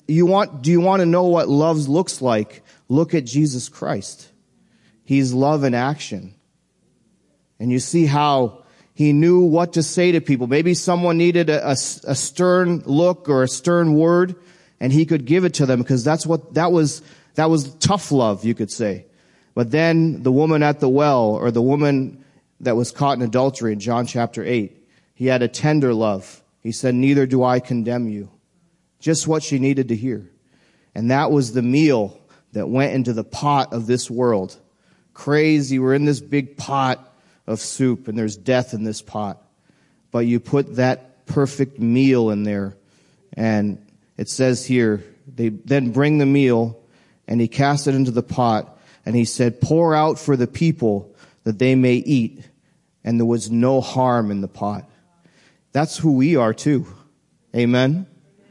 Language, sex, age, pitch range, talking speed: English, male, 30-49, 120-155 Hz, 180 wpm